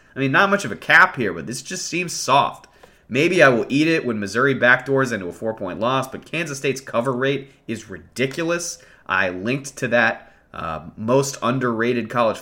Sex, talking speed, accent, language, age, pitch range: male, 195 wpm, American, English, 30-49, 110-140 Hz